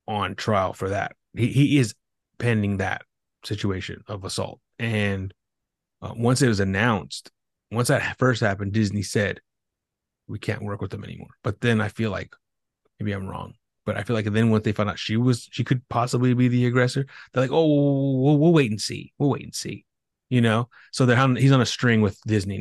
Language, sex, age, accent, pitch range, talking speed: English, male, 30-49, American, 105-125 Hz, 205 wpm